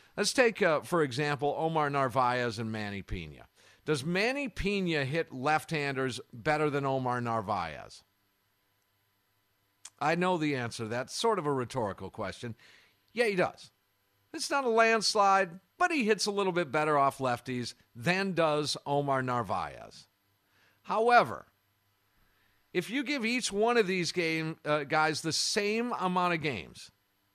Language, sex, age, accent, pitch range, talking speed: English, male, 50-69, American, 115-190 Hz, 140 wpm